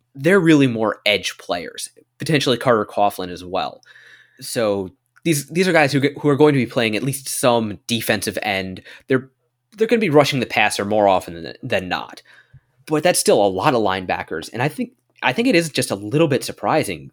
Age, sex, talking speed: 20-39, male, 205 wpm